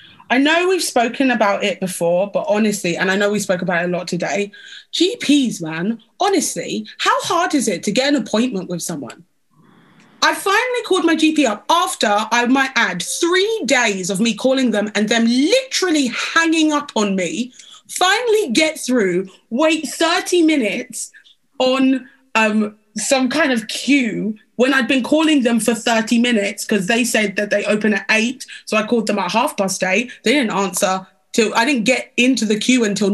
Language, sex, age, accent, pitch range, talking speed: English, female, 20-39, British, 210-315 Hz, 185 wpm